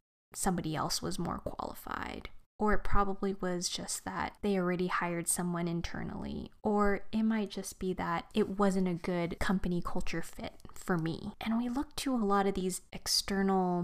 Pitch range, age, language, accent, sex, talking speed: 180-210 Hz, 20-39, English, American, female, 175 wpm